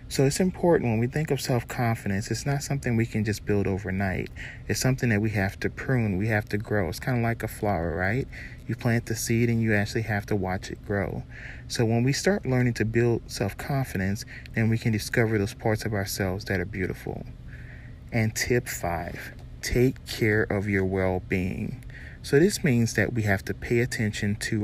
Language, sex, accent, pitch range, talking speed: English, male, American, 100-120 Hz, 200 wpm